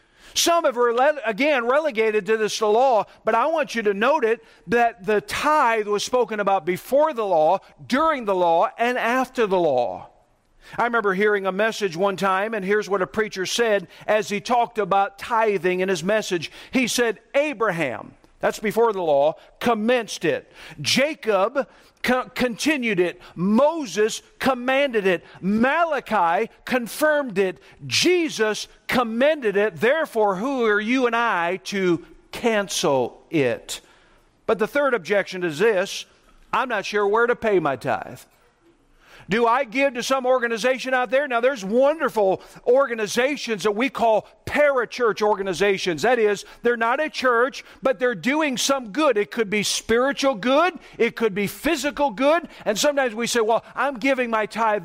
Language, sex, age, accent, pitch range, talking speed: English, male, 50-69, American, 210-265 Hz, 155 wpm